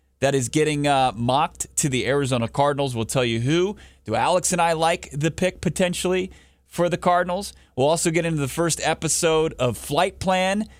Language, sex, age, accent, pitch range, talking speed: English, male, 30-49, American, 125-155 Hz, 190 wpm